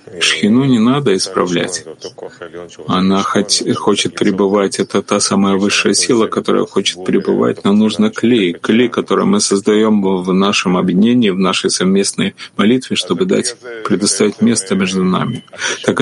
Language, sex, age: Russian, male, 30-49